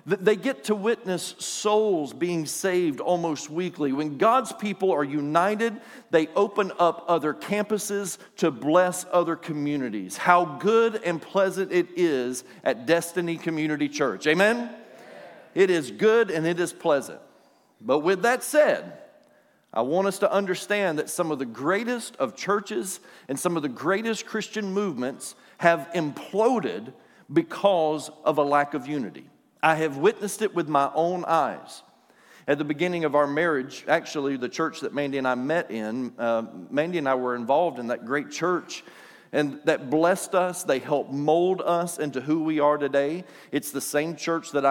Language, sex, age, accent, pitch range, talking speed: English, male, 50-69, American, 145-190 Hz, 165 wpm